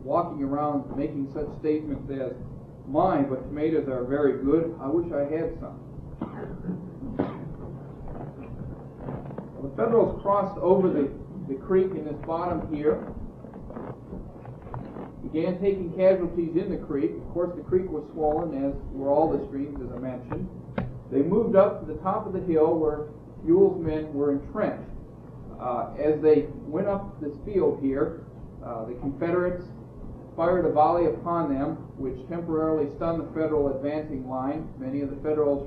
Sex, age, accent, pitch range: male, 40-59, American, 135-165 Hz